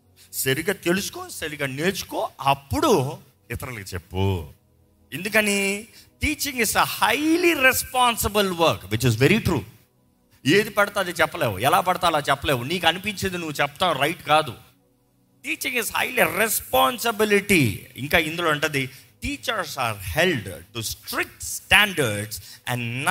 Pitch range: 120-175 Hz